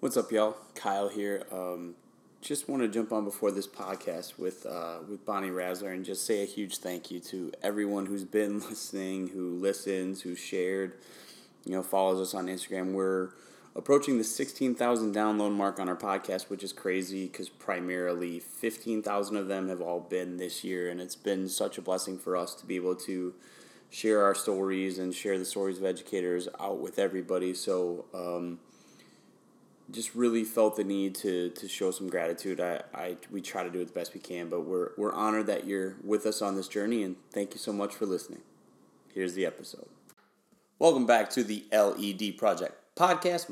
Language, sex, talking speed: English, male, 190 wpm